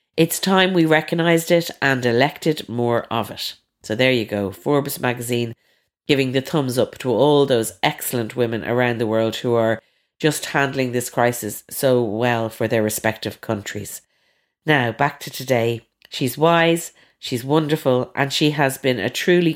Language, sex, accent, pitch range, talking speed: English, female, Irish, 120-155 Hz, 165 wpm